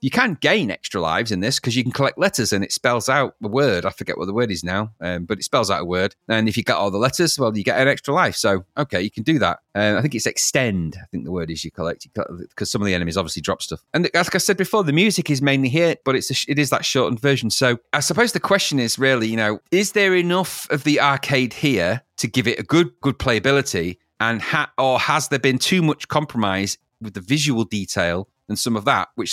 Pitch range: 110-155 Hz